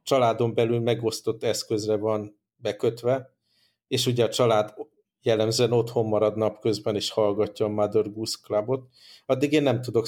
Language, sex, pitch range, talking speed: Hungarian, male, 110-125 Hz, 135 wpm